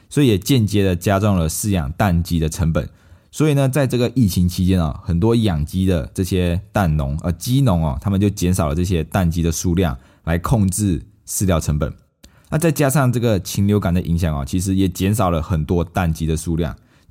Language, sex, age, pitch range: Chinese, male, 20-39, 80-105 Hz